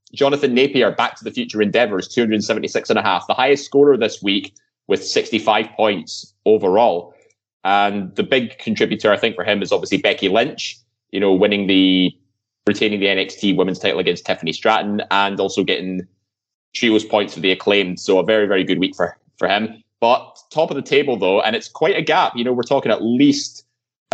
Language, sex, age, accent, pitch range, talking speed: English, male, 20-39, British, 100-125 Hz, 200 wpm